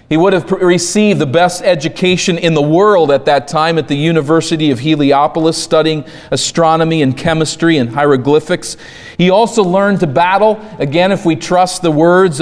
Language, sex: English, male